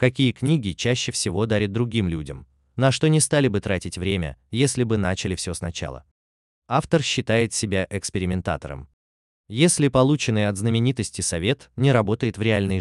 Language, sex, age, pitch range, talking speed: Russian, male, 20-39, 85-130 Hz, 150 wpm